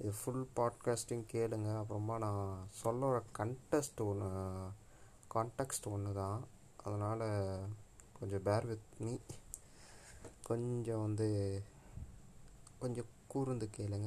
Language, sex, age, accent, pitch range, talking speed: Tamil, male, 20-39, native, 105-120 Hz, 90 wpm